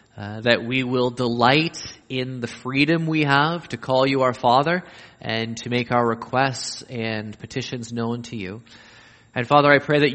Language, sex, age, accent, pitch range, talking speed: English, male, 20-39, American, 120-140 Hz, 175 wpm